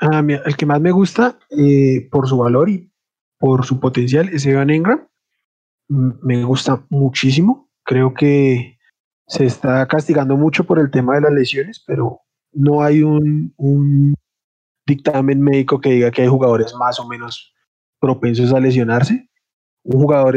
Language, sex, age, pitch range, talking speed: Spanish, male, 20-39, 135-160 Hz, 155 wpm